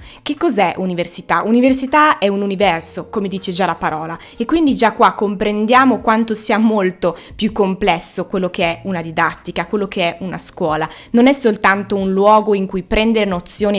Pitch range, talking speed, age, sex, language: 185-220 Hz, 180 wpm, 20-39, female, Italian